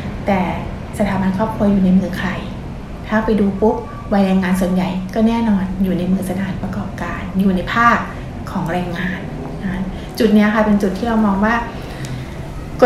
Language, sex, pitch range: Thai, female, 185-220 Hz